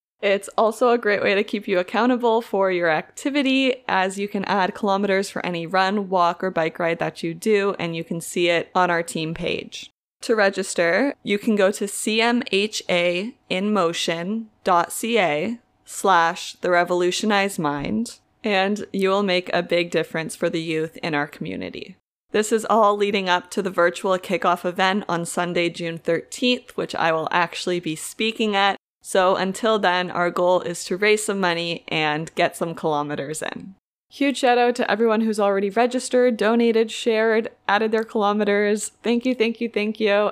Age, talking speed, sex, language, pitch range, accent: 20-39, 170 wpm, female, English, 175-215 Hz, American